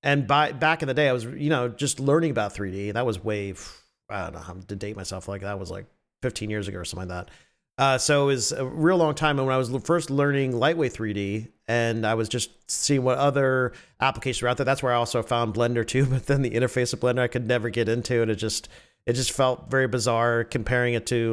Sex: male